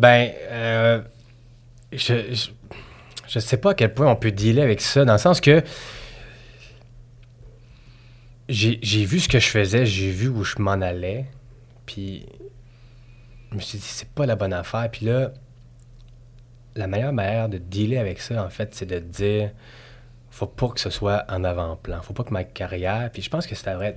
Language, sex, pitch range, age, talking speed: French, male, 95-120 Hz, 20-39, 185 wpm